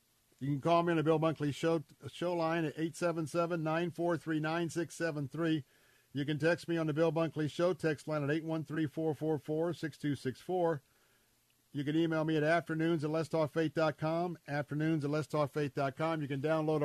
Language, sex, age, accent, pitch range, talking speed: English, male, 50-69, American, 130-170 Hz, 135 wpm